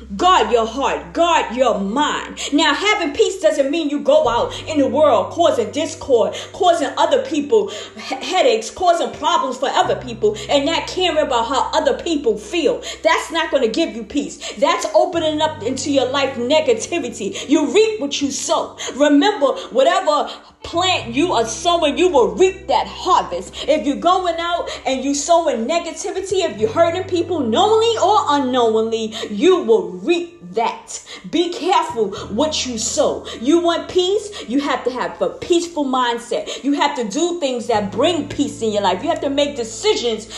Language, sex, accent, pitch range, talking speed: English, female, American, 275-360 Hz, 175 wpm